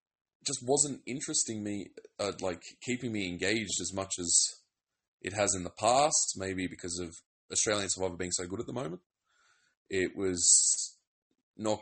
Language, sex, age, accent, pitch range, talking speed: English, male, 20-39, Australian, 95-135 Hz, 155 wpm